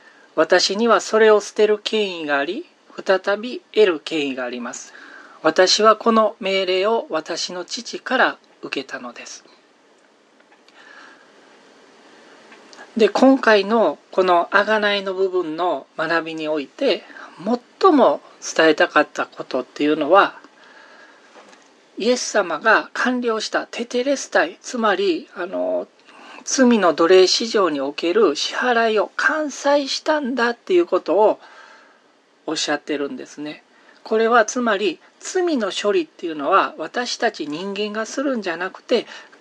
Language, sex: Japanese, male